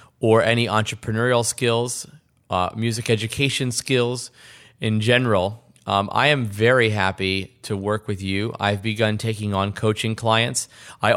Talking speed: 140 wpm